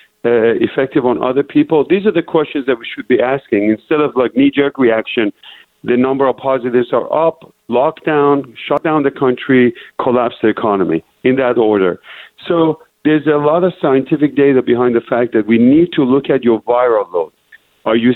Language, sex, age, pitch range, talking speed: English, male, 50-69, 120-150 Hz, 190 wpm